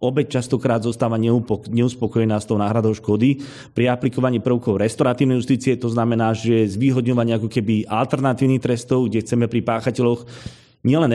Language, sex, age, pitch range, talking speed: Slovak, male, 30-49, 115-140 Hz, 140 wpm